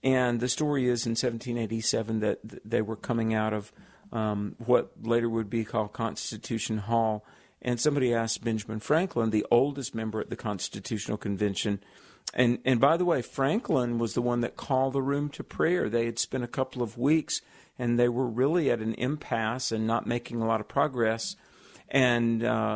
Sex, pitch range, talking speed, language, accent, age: male, 115-135 Hz, 180 wpm, English, American, 50-69